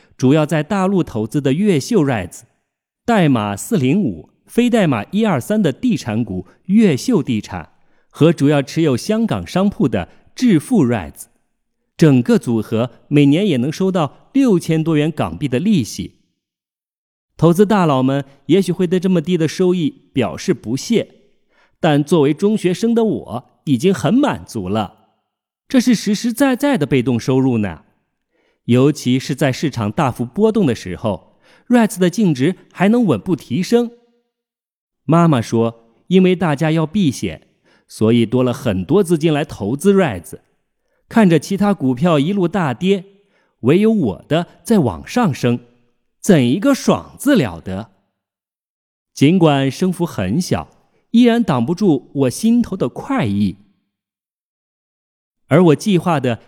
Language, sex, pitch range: Chinese, male, 125-205 Hz